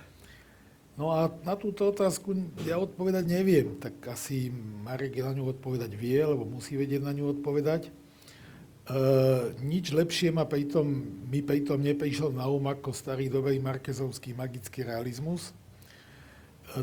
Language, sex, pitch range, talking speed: Slovak, male, 130-155 Hz, 130 wpm